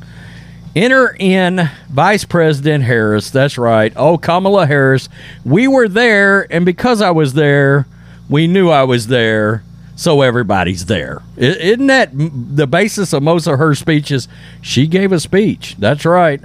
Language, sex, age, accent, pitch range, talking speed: English, male, 40-59, American, 145-225 Hz, 150 wpm